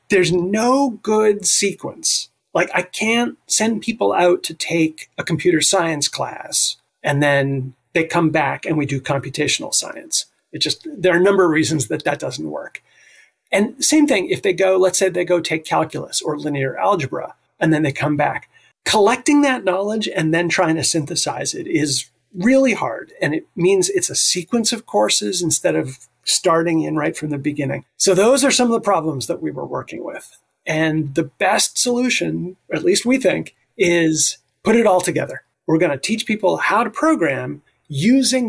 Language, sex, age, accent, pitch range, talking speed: English, male, 30-49, American, 160-225 Hz, 185 wpm